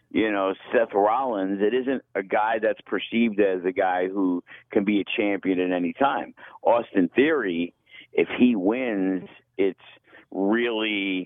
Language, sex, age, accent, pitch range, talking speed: English, male, 50-69, American, 90-120 Hz, 150 wpm